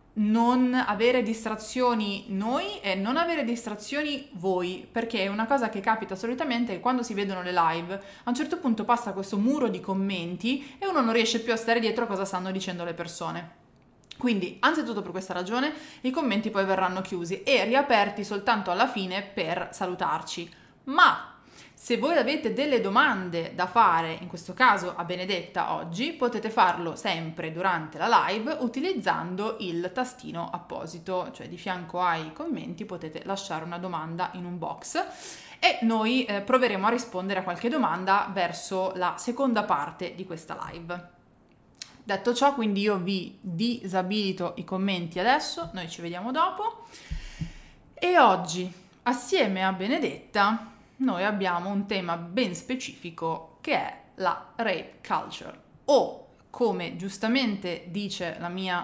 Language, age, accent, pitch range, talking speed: Italian, 20-39, native, 180-240 Hz, 150 wpm